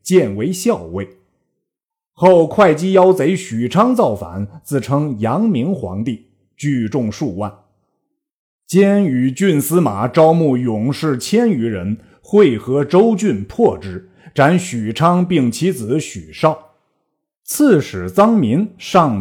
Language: Chinese